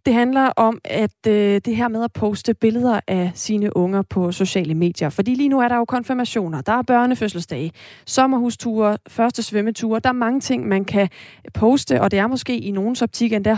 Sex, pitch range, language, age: female, 190-235 Hz, Danish, 30-49